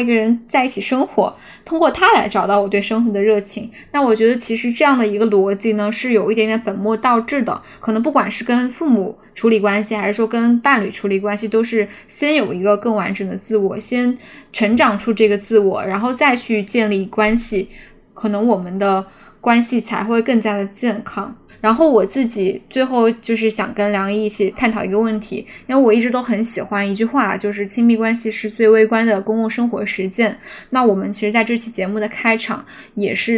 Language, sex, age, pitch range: Chinese, female, 10-29, 205-235 Hz